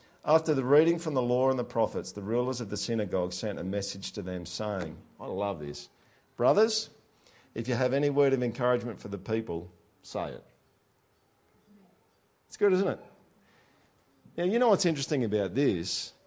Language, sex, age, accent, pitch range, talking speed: English, male, 50-69, Australian, 110-175 Hz, 175 wpm